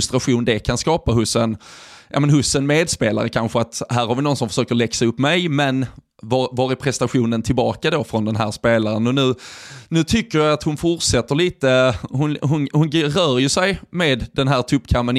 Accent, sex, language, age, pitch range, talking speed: native, male, Swedish, 20-39, 120-140 Hz, 200 wpm